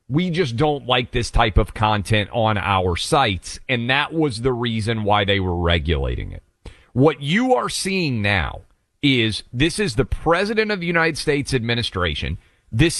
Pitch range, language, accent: 105-150 Hz, English, American